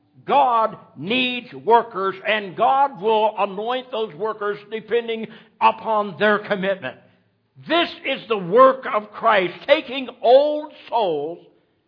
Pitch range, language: 220-285 Hz, English